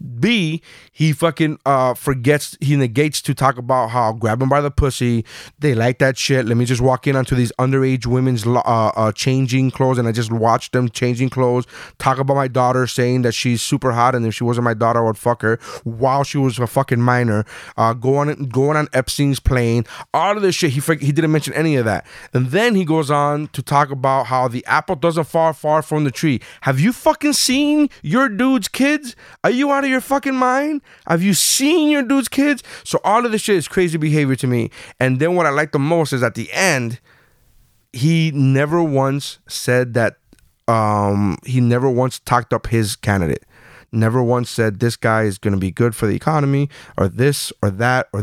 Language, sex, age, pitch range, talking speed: English, male, 20-39, 115-150 Hz, 210 wpm